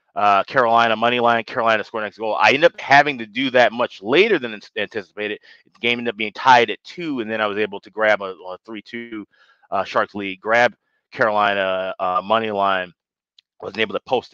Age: 30-49